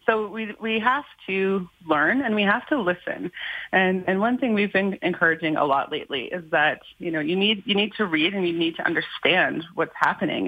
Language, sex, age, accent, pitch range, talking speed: English, female, 30-49, American, 170-220 Hz, 220 wpm